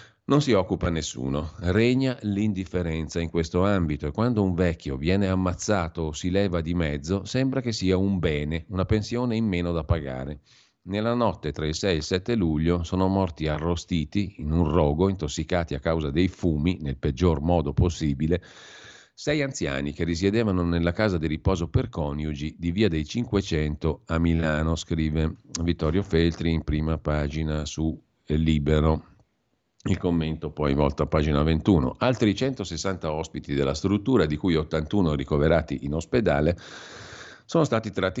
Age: 50-69